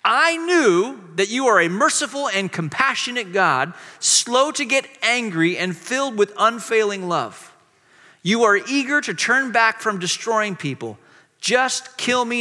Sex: male